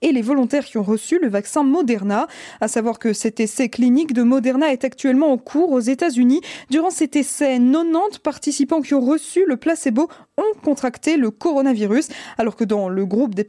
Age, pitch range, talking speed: 20-39, 245-295 Hz, 195 wpm